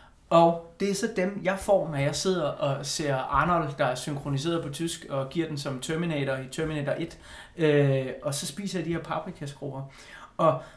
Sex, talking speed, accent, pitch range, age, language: male, 195 wpm, native, 150-200 Hz, 30-49, Danish